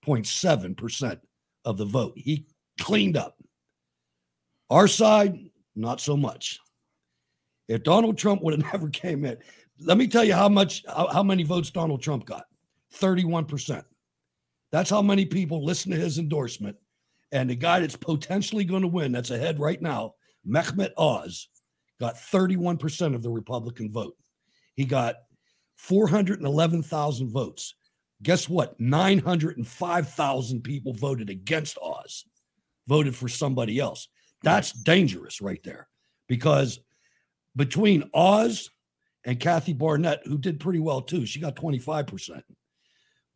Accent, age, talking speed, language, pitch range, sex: American, 60-79, 145 wpm, English, 125-175 Hz, male